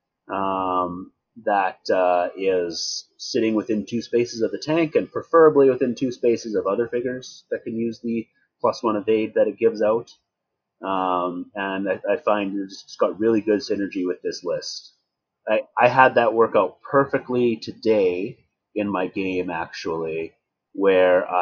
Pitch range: 95-125 Hz